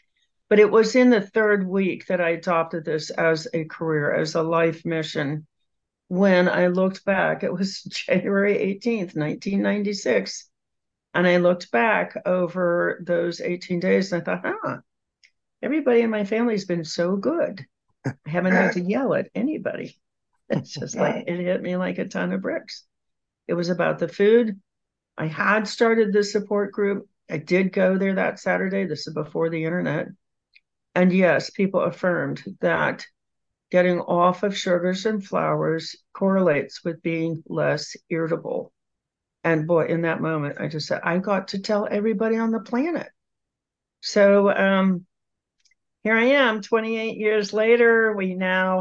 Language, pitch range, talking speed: English, 170-210 Hz, 160 wpm